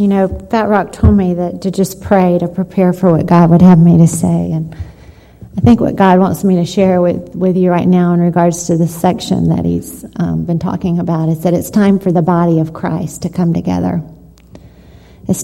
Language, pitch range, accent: English, 165-185 Hz, American